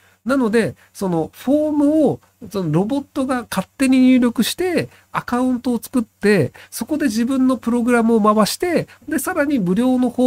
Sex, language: male, Japanese